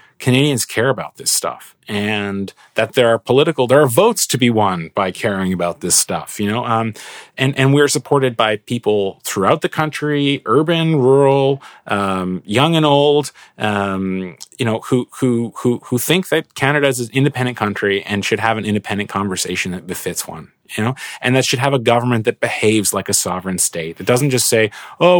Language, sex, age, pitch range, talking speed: English, male, 30-49, 100-140 Hz, 195 wpm